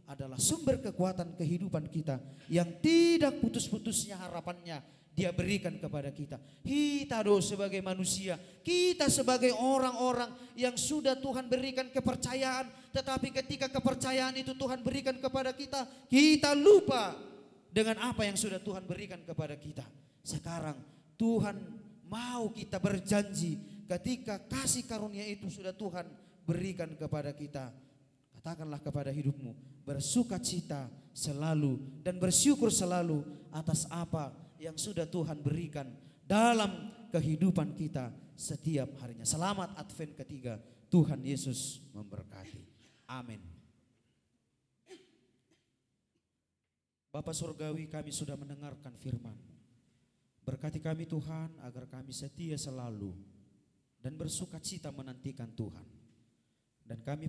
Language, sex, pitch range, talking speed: Indonesian, male, 140-210 Hz, 110 wpm